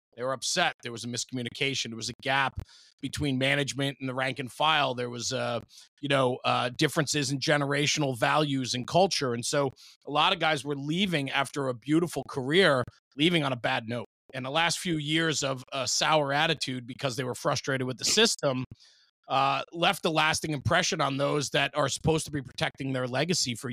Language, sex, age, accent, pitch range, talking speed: English, male, 30-49, American, 125-150 Hz, 200 wpm